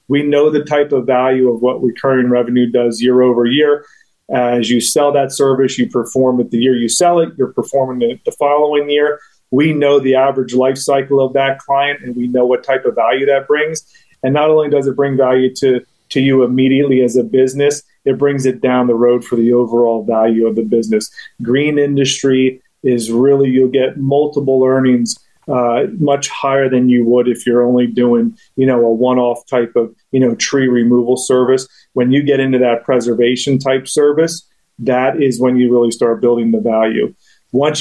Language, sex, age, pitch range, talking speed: English, male, 30-49, 125-140 Hz, 200 wpm